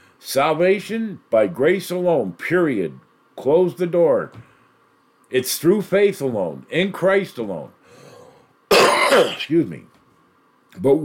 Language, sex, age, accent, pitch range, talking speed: English, male, 50-69, American, 130-190 Hz, 100 wpm